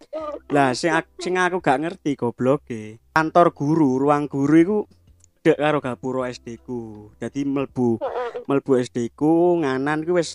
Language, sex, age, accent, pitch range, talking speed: Indonesian, male, 20-39, native, 120-180 Hz, 145 wpm